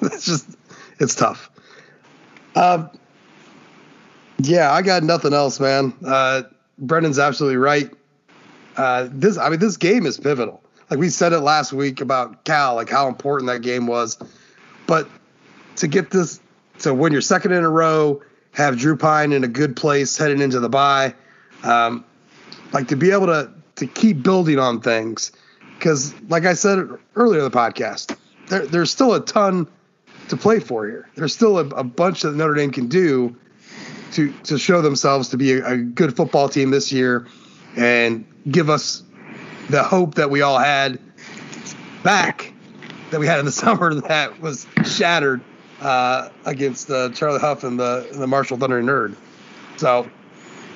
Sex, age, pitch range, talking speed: male, 30-49, 135-175 Hz, 170 wpm